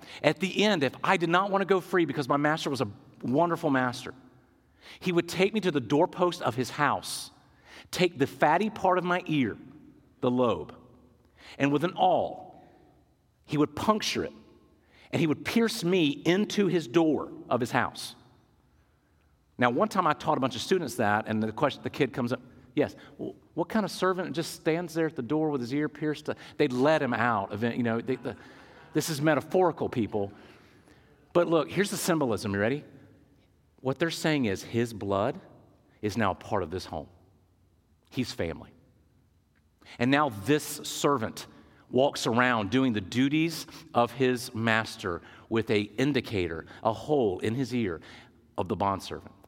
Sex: male